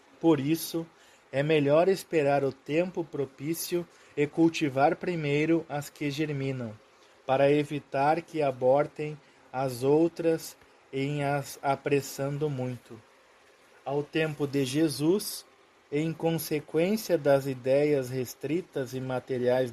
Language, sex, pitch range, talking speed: Portuguese, male, 135-160 Hz, 105 wpm